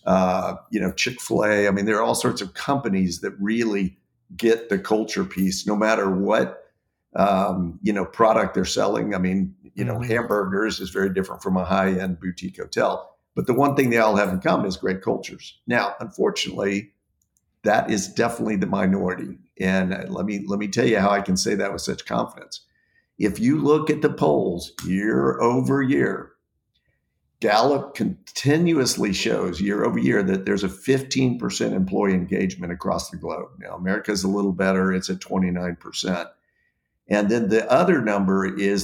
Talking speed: 170 wpm